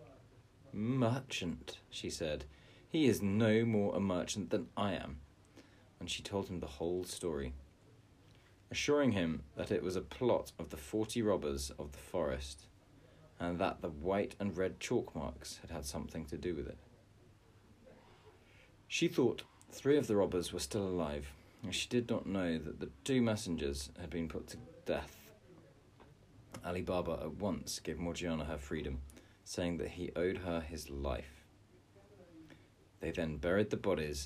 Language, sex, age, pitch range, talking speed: English, male, 40-59, 80-105 Hz, 160 wpm